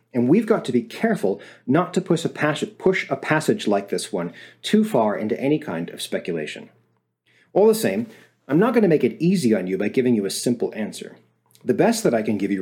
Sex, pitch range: male, 110-175 Hz